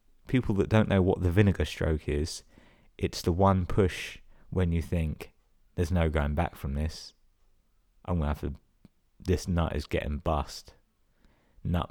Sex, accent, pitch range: male, British, 80-100 Hz